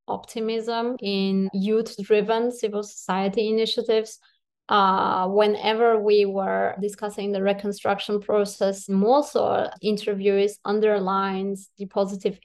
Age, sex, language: 20-39, female, English